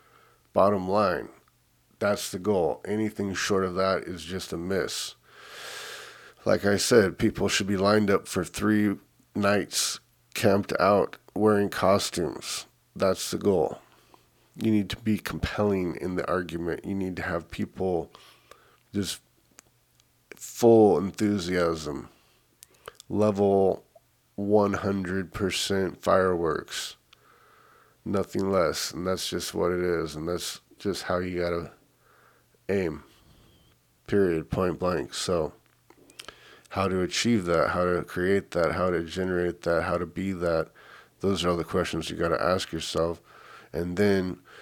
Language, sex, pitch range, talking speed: English, male, 90-100 Hz, 130 wpm